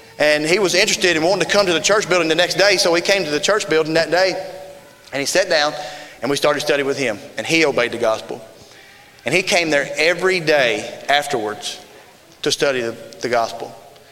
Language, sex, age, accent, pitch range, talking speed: English, male, 30-49, American, 135-180 Hz, 215 wpm